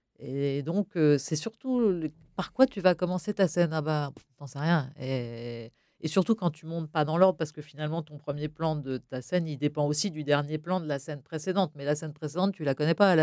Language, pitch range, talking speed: French, 135-170 Hz, 250 wpm